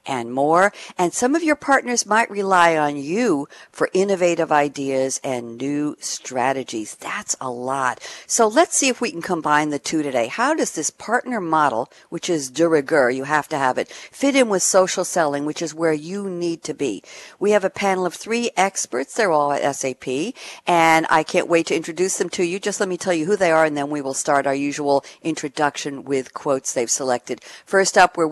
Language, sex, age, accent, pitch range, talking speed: English, female, 60-79, American, 145-195 Hz, 210 wpm